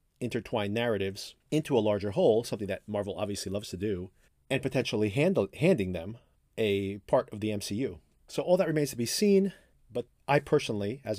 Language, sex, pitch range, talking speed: English, male, 100-145 Hz, 180 wpm